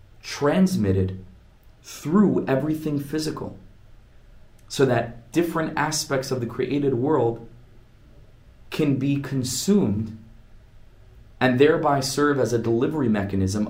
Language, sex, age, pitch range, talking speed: English, male, 30-49, 105-140 Hz, 95 wpm